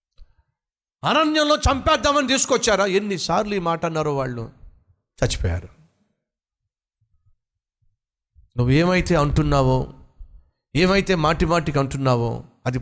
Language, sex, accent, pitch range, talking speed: Telugu, male, native, 115-170 Hz, 75 wpm